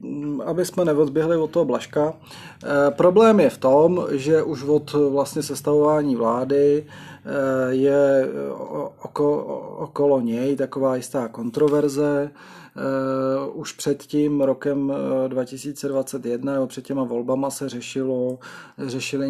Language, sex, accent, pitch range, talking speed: Czech, male, native, 135-155 Hz, 115 wpm